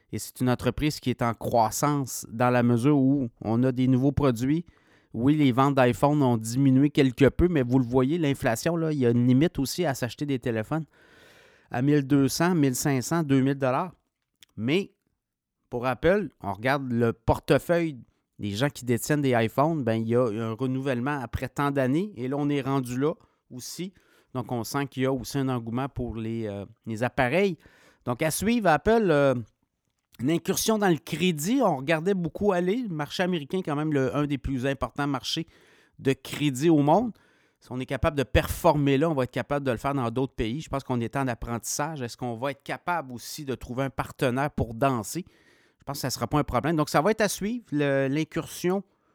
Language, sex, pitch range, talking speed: French, male, 125-150 Hz, 210 wpm